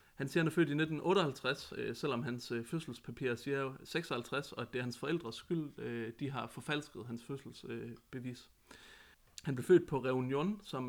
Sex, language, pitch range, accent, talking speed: male, Danish, 120-150 Hz, native, 165 wpm